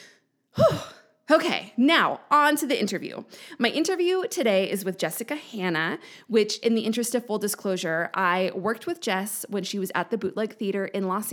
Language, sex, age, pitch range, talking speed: English, female, 20-39, 185-245 Hz, 175 wpm